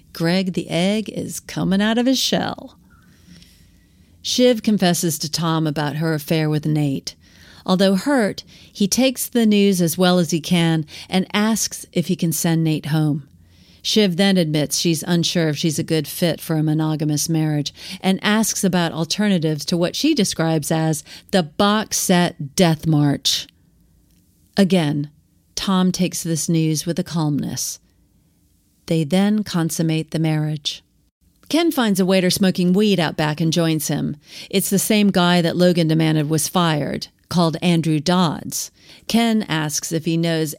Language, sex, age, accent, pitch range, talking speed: English, female, 40-59, American, 155-195 Hz, 155 wpm